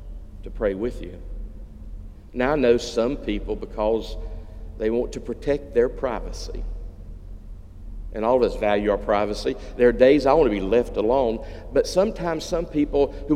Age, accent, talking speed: 50-69, American, 165 wpm